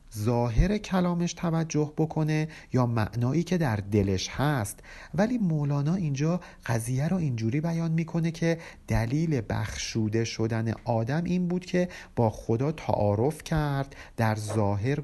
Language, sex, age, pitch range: Persian, male, 50-69, 110-155 Hz